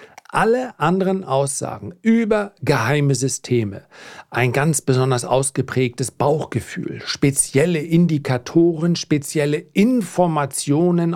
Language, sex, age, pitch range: German, male, 40-59, 130-165 Hz